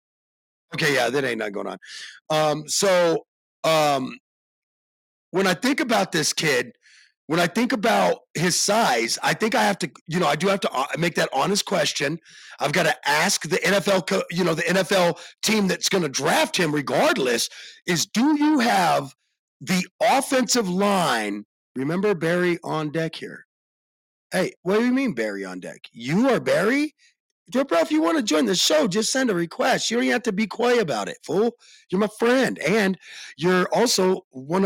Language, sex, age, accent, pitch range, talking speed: English, male, 40-59, American, 165-240 Hz, 185 wpm